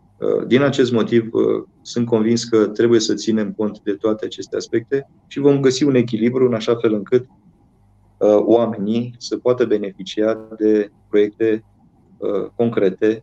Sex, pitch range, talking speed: male, 105-120 Hz, 135 wpm